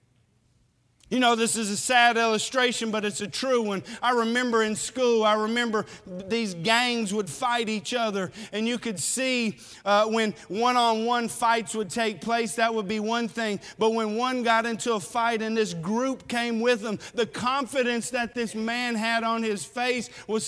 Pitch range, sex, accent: 205-255 Hz, male, American